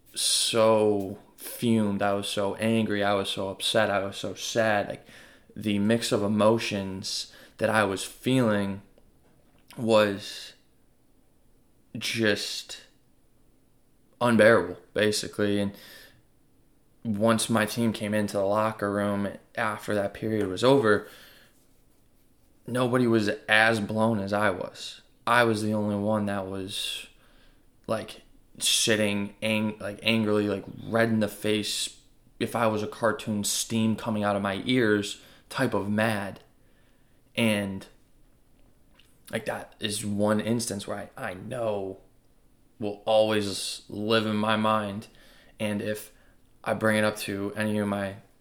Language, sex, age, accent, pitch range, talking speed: English, male, 20-39, American, 100-110 Hz, 130 wpm